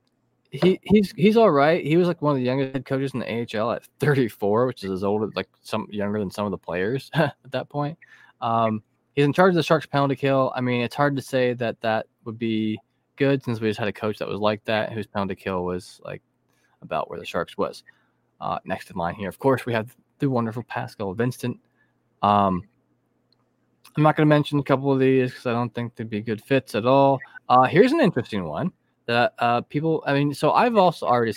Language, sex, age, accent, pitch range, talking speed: English, male, 20-39, American, 110-140 Hz, 235 wpm